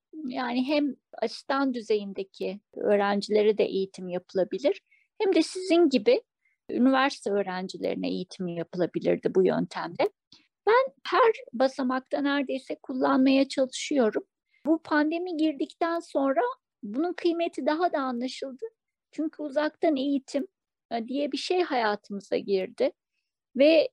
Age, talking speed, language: 50-69, 105 wpm, Turkish